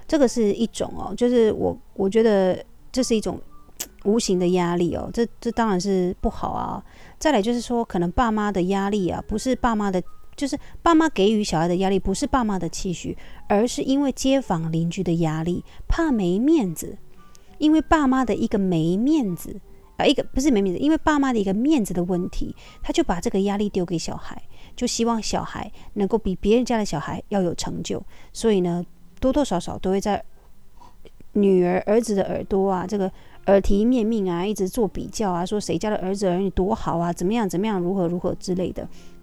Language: Chinese